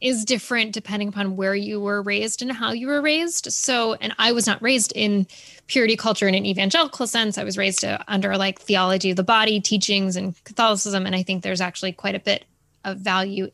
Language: English